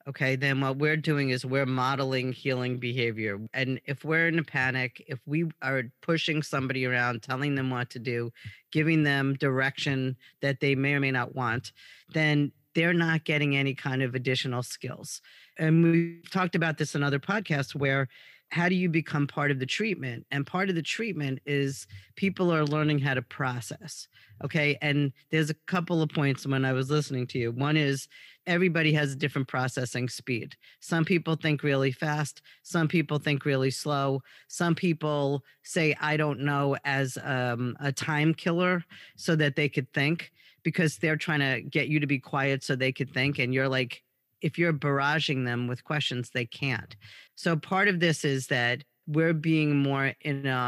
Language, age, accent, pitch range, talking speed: English, 40-59, American, 130-160 Hz, 185 wpm